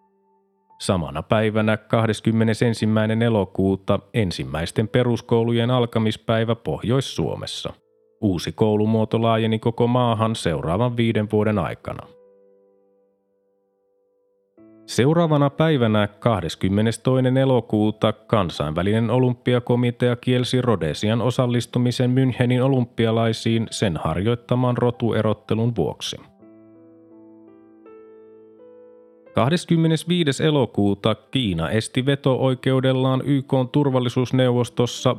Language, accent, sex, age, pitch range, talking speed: Finnish, native, male, 30-49, 110-130 Hz, 65 wpm